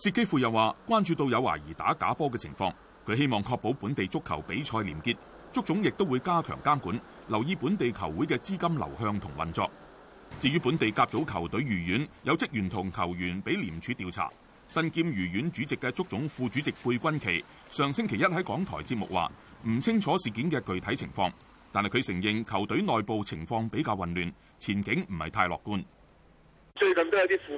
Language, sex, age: Chinese, male, 30-49